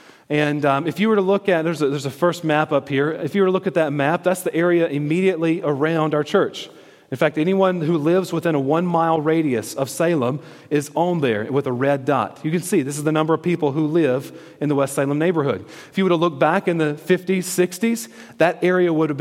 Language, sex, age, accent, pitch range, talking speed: English, male, 40-59, American, 145-180 Hz, 245 wpm